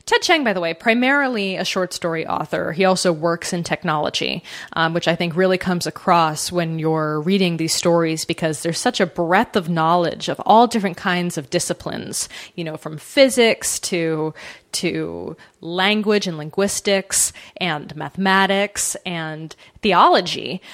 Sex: female